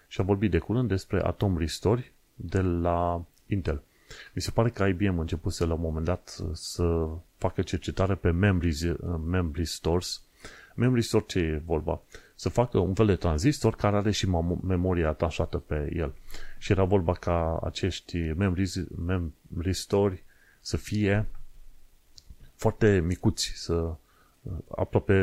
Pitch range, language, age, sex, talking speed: 85-105 Hz, Romanian, 30-49, male, 145 wpm